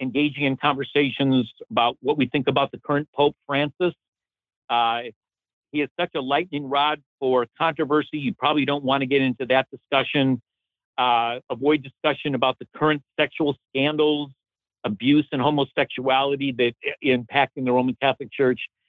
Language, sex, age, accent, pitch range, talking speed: English, male, 50-69, American, 125-150 Hz, 155 wpm